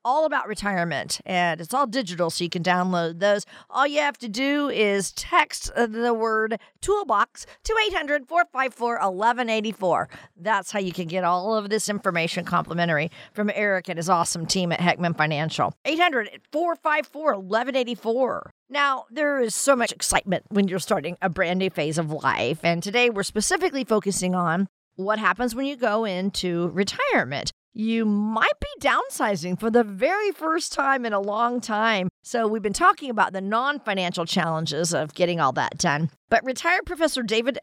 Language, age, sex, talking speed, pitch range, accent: English, 50-69, female, 165 wpm, 180-255 Hz, American